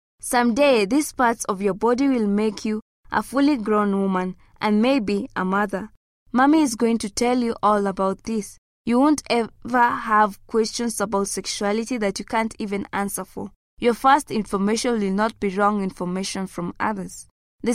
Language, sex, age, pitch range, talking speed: English, female, 20-39, 200-240 Hz, 170 wpm